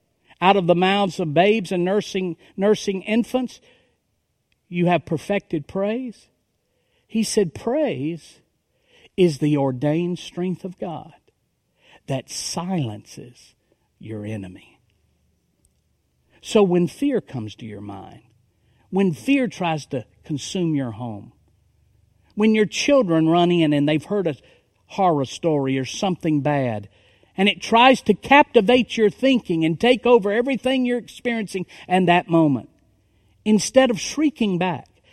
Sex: male